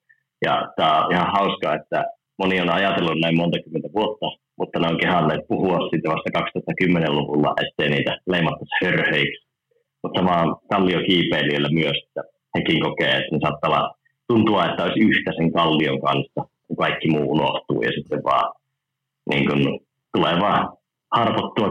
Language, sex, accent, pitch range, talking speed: Finnish, male, native, 80-105 Hz, 140 wpm